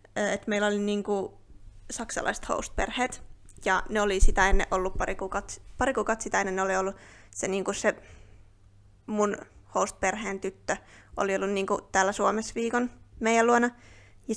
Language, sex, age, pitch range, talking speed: Finnish, female, 20-39, 190-230 Hz, 155 wpm